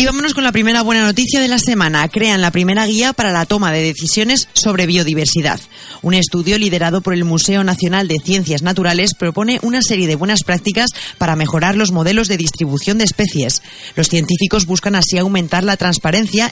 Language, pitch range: Spanish, 170-205 Hz